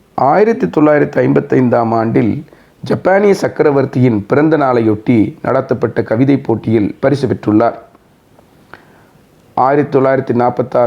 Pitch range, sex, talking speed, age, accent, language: 120-150 Hz, male, 75 wpm, 40-59, native, Tamil